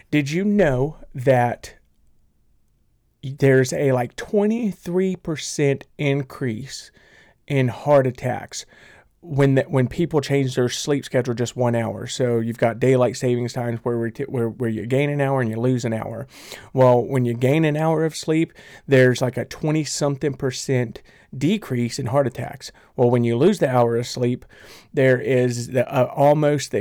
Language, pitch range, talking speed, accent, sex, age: English, 115-135 Hz, 165 wpm, American, male, 40-59